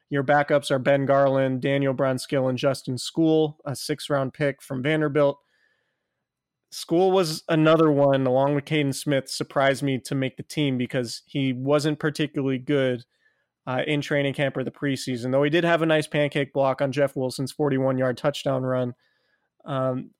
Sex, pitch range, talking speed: male, 130-150 Hz, 165 wpm